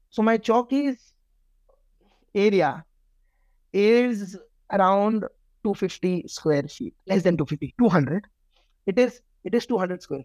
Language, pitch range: Hindi, 175-225 Hz